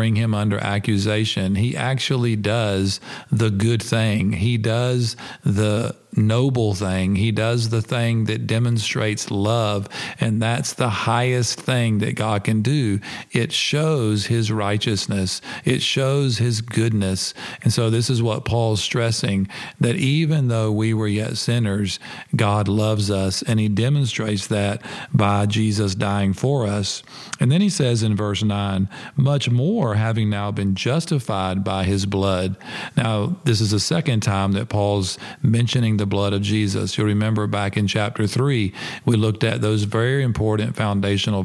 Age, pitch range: 50-69, 105-120 Hz